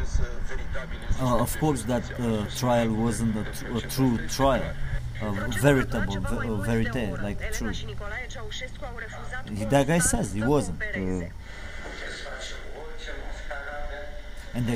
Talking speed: 105 wpm